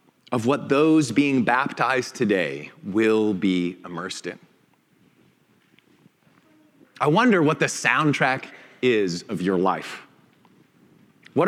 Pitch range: 140-205 Hz